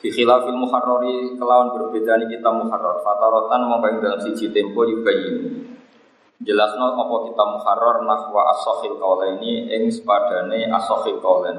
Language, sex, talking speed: Malay, male, 140 wpm